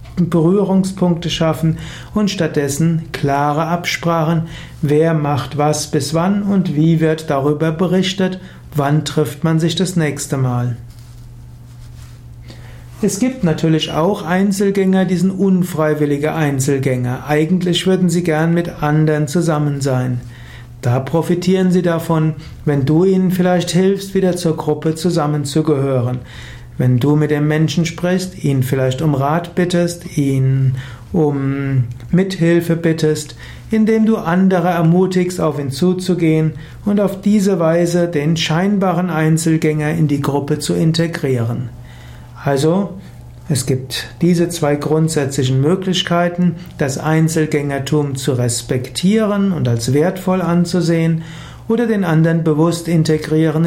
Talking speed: 120 wpm